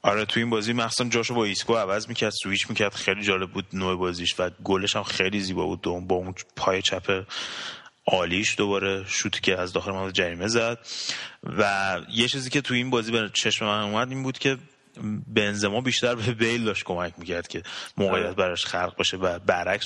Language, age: Persian, 30-49